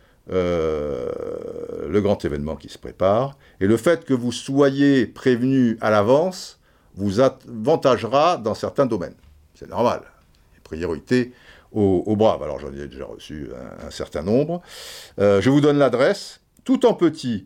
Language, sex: French, male